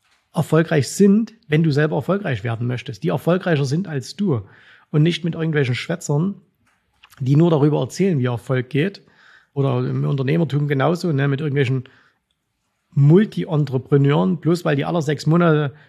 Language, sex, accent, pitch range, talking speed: German, male, German, 140-165 Hz, 145 wpm